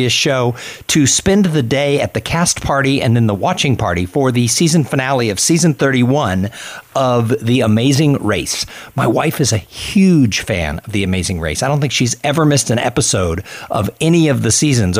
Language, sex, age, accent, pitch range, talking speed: English, male, 50-69, American, 105-140 Hz, 190 wpm